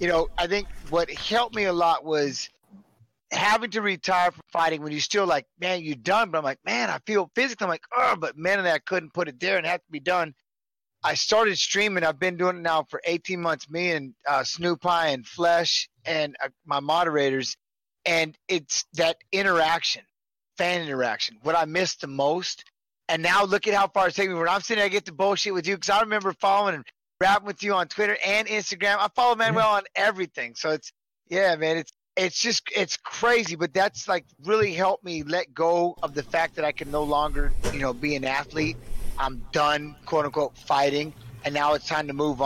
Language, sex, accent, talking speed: English, male, American, 220 wpm